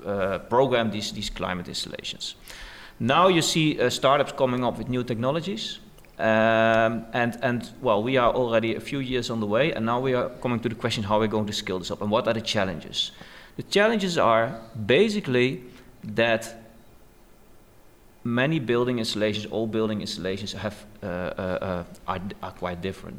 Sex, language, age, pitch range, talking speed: male, English, 40-59, 110-140 Hz, 180 wpm